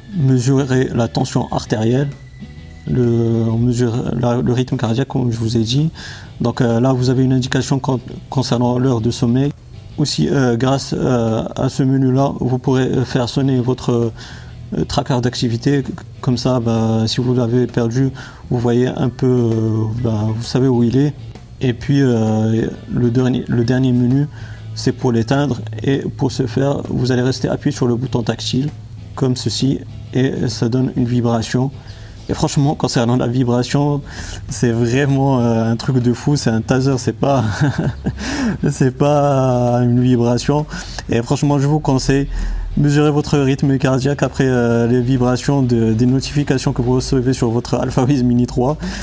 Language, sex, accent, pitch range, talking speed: French, male, French, 115-135 Hz, 165 wpm